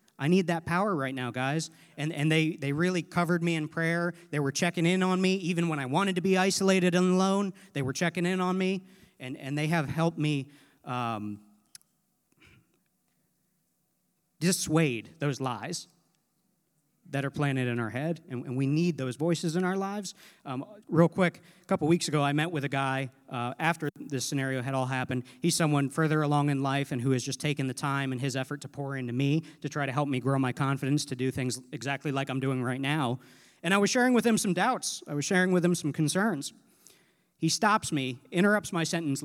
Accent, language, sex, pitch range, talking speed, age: American, English, male, 135-185 Hz, 210 wpm, 40-59